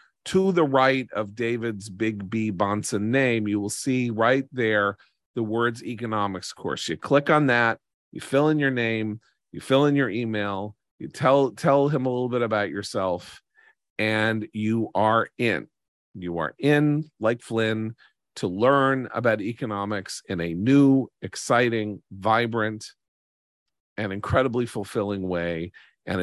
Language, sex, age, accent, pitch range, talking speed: English, male, 40-59, American, 95-120 Hz, 145 wpm